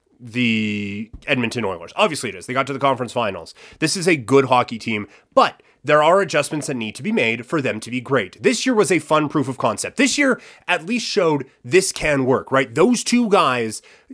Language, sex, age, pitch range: English, male, 30-49, 125-165 Hz